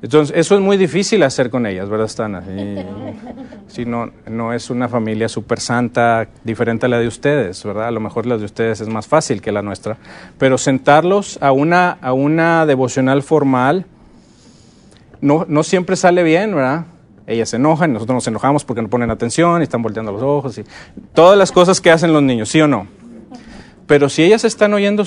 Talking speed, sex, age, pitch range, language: 195 wpm, male, 40-59, 115-165 Hz, English